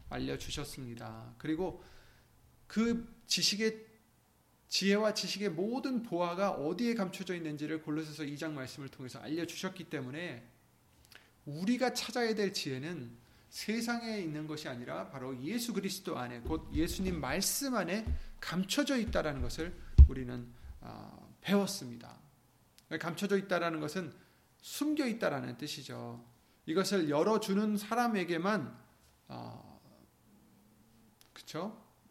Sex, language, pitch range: male, Korean, 125-190 Hz